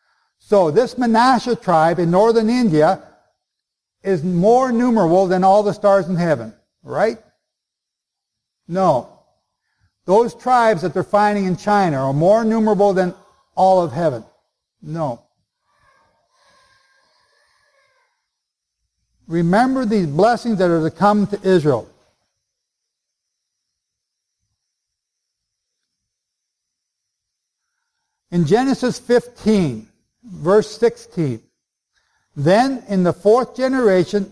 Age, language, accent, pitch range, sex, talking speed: 60-79, English, American, 175-235 Hz, male, 90 wpm